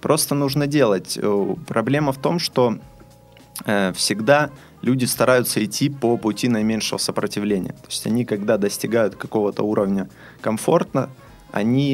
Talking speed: 120 wpm